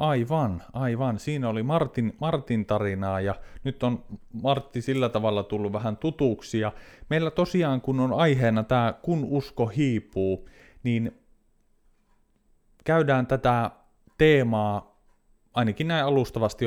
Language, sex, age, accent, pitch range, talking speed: Finnish, male, 30-49, native, 100-130 Hz, 115 wpm